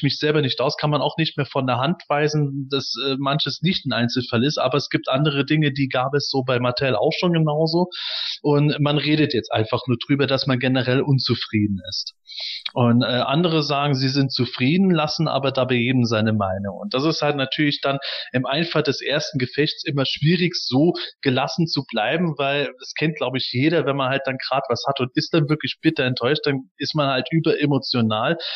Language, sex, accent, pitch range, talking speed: German, male, German, 130-155 Hz, 210 wpm